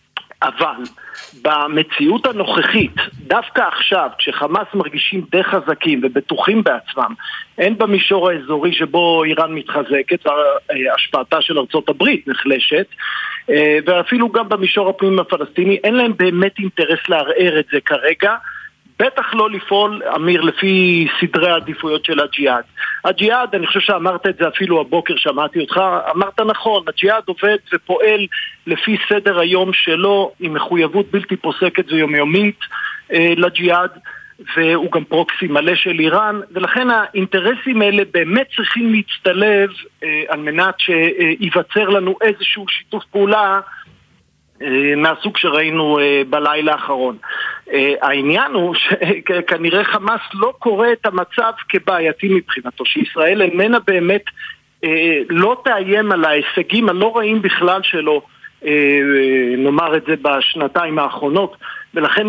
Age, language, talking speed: 50-69, Hebrew, 115 wpm